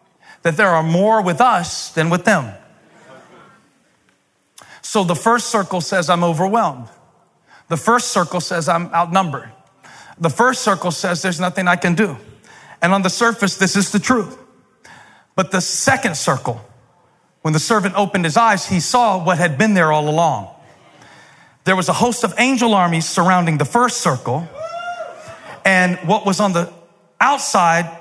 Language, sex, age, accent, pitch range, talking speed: English, male, 40-59, American, 170-245 Hz, 160 wpm